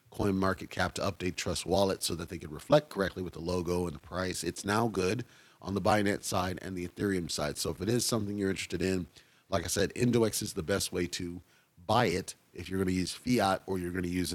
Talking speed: 250 wpm